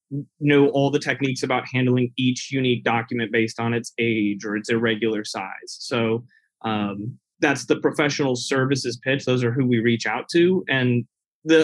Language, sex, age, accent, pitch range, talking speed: English, male, 30-49, American, 115-140 Hz, 170 wpm